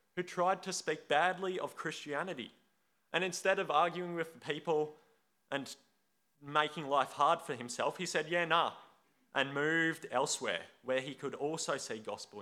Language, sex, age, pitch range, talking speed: English, male, 20-39, 130-185 Hz, 160 wpm